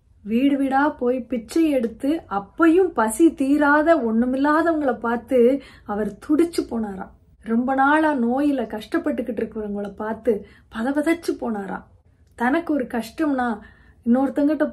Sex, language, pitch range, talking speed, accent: female, Tamil, 220-275 Hz, 100 wpm, native